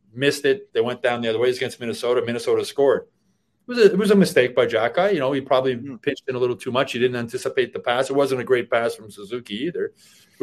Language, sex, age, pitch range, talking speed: English, male, 30-49, 120-185 Hz, 265 wpm